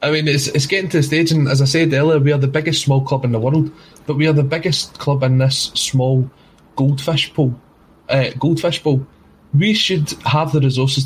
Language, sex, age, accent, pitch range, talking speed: English, male, 20-39, British, 125-150 Hz, 210 wpm